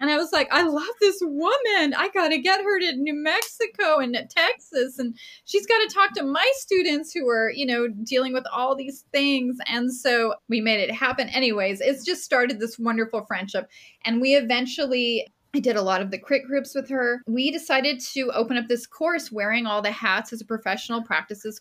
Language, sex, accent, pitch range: English, female, American, 210-270 Hz